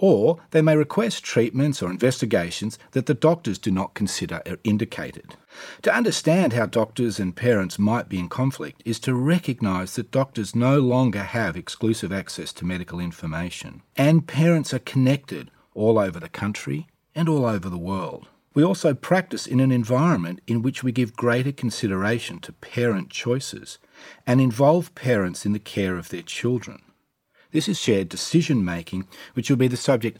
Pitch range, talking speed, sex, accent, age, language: 100-135 Hz, 165 wpm, male, Australian, 40-59, English